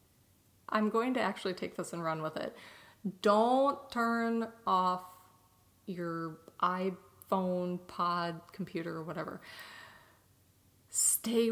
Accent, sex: American, female